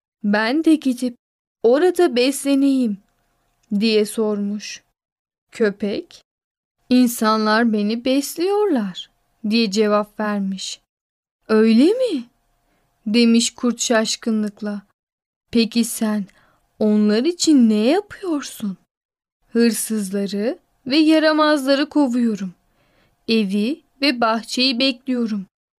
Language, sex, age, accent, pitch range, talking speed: Turkish, female, 10-29, native, 215-265 Hz, 75 wpm